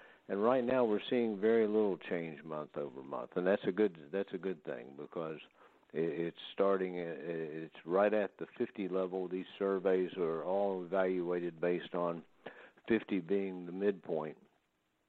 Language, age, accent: English, 60-79, American